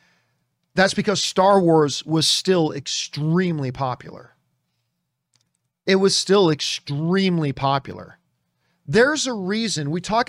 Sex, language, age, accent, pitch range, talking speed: male, English, 40-59, American, 155-220 Hz, 105 wpm